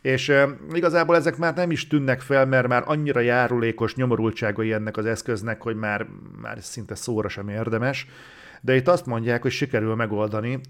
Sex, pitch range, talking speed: male, 110-130 Hz, 170 wpm